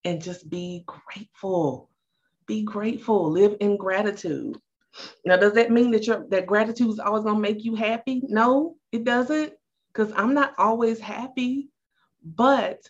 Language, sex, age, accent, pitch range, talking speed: English, female, 30-49, American, 155-220 Hz, 155 wpm